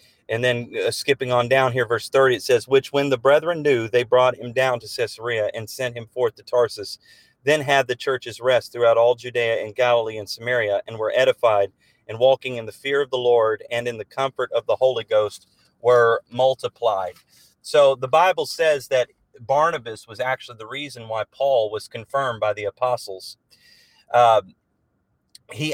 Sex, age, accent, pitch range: male, 30-49, American, 115-135 Hz